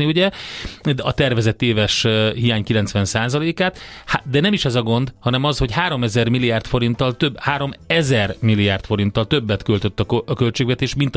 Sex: male